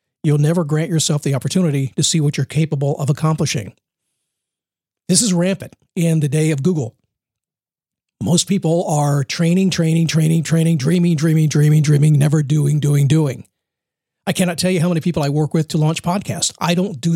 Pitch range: 150-175 Hz